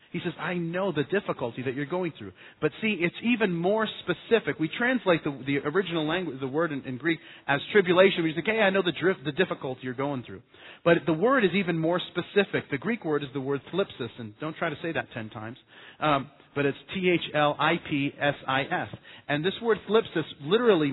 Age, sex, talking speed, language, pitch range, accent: 40-59, male, 225 wpm, English, 140-190 Hz, American